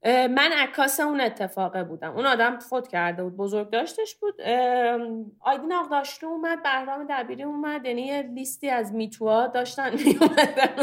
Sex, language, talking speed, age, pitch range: female, Persian, 150 wpm, 30-49, 205-280 Hz